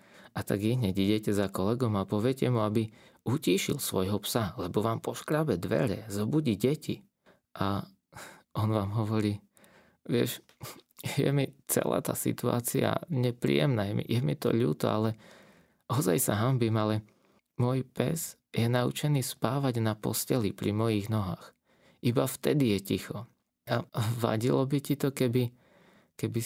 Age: 20-39